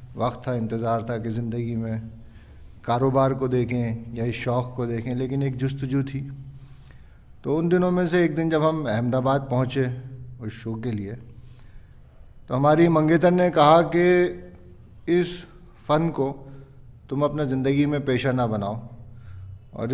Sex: male